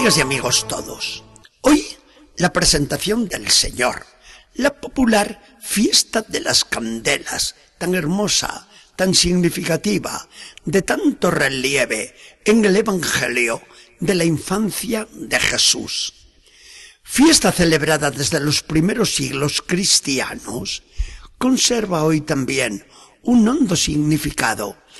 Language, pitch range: Spanish, 140-210 Hz